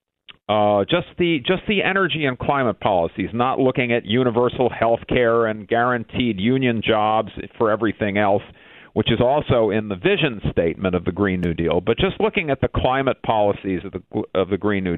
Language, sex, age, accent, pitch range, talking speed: English, male, 50-69, American, 110-150 Hz, 190 wpm